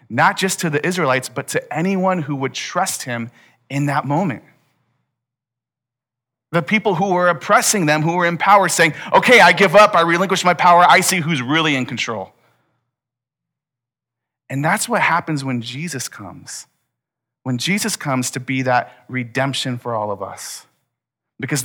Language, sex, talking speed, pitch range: English, male, 165 wpm, 125-160 Hz